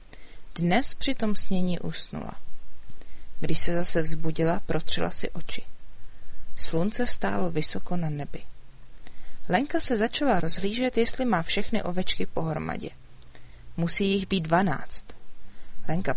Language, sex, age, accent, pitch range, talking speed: Czech, female, 40-59, native, 155-200 Hz, 115 wpm